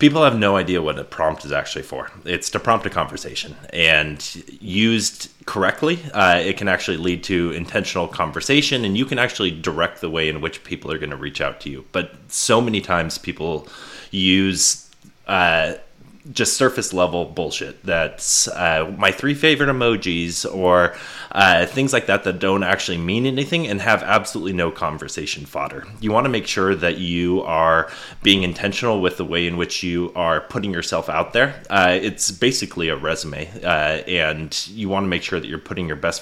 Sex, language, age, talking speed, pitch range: male, English, 20-39, 185 wpm, 85-100 Hz